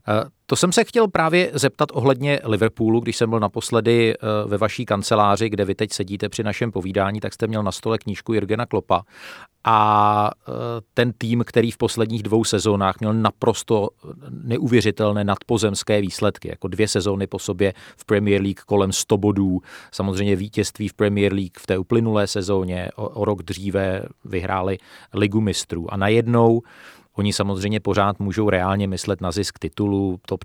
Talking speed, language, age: 160 wpm, Czech, 40-59